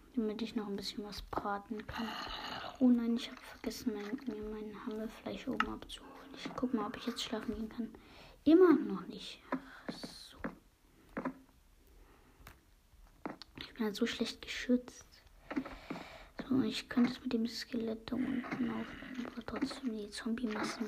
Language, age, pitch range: German, 20-39, 215-255 Hz